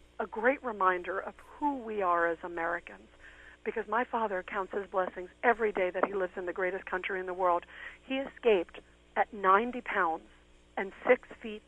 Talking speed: 180 wpm